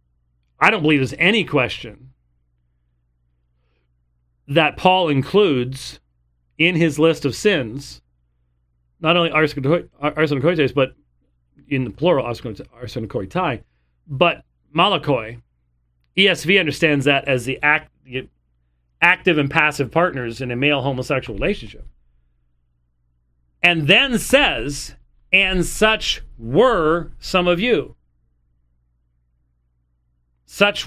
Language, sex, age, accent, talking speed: English, male, 40-59, American, 90 wpm